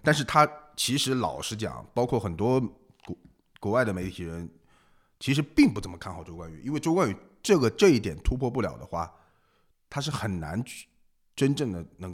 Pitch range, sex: 95-130 Hz, male